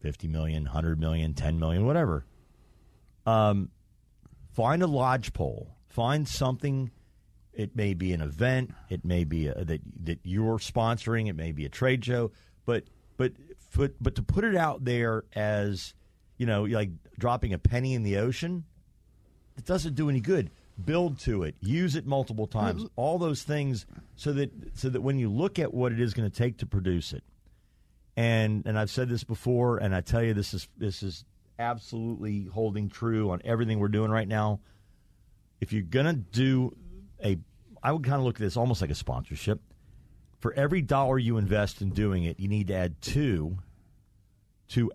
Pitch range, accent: 95-125 Hz, American